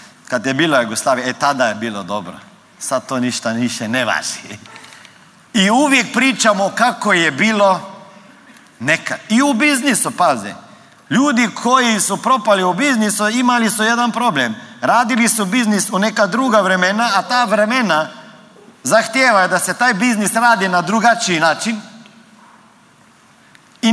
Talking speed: 140 wpm